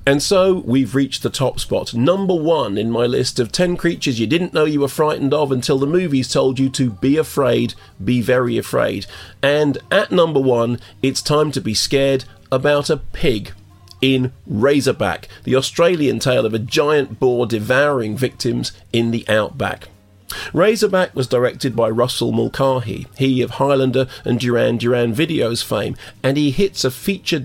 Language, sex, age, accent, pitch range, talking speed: English, male, 40-59, British, 120-150 Hz, 170 wpm